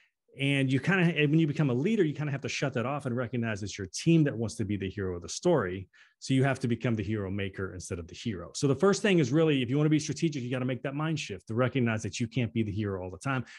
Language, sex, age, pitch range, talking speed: English, male, 30-49, 105-140 Hz, 325 wpm